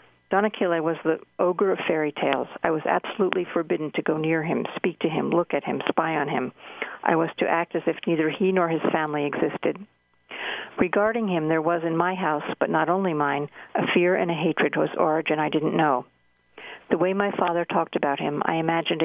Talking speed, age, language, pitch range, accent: 210 wpm, 50-69, English, 155-175 Hz, American